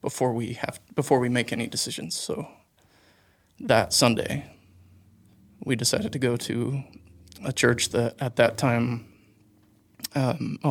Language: English